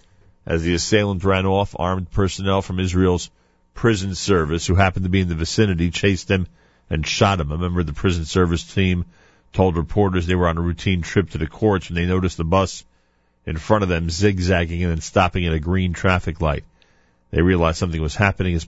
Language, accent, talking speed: English, American, 210 wpm